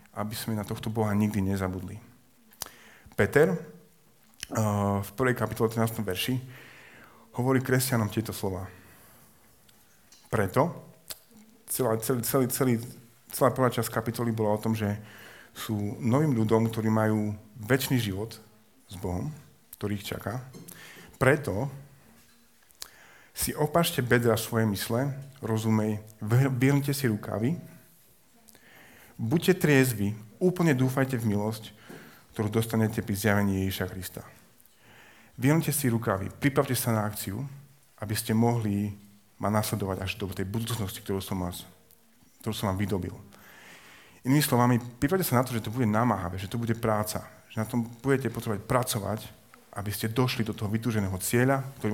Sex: male